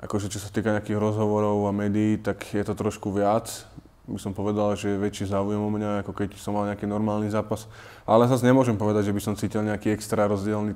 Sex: male